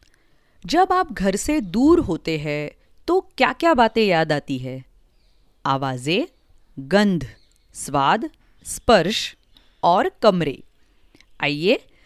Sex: female